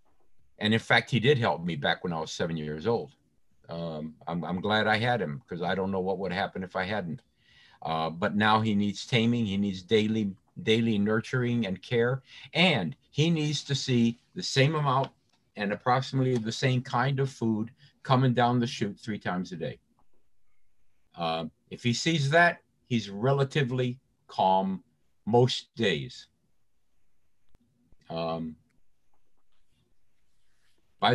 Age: 50-69